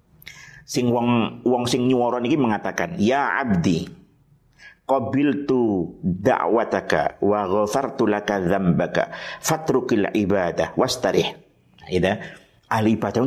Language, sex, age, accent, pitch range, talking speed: Indonesian, male, 50-69, native, 100-135 Hz, 95 wpm